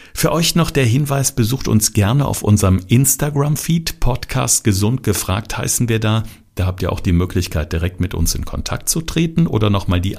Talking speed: 195 wpm